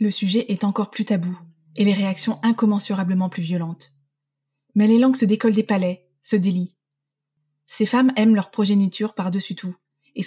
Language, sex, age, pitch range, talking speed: French, female, 20-39, 180-215 Hz, 170 wpm